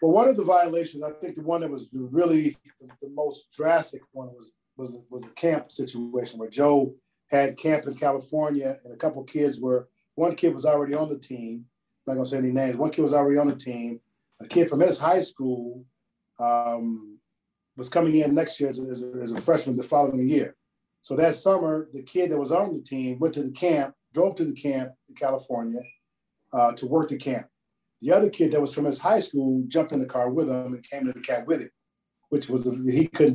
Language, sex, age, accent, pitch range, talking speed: English, male, 40-59, American, 125-155 Hz, 230 wpm